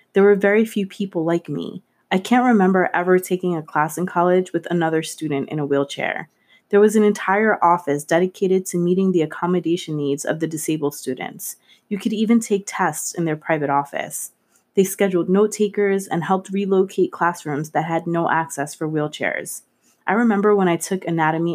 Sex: female